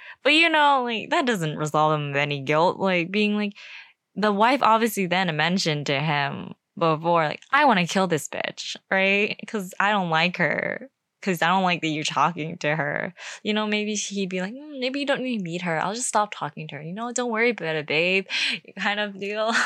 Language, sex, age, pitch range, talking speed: English, female, 10-29, 165-250 Hz, 225 wpm